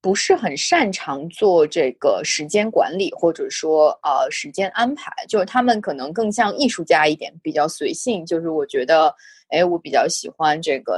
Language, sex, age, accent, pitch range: Chinese, female, 20-39, native, 160-265 Hz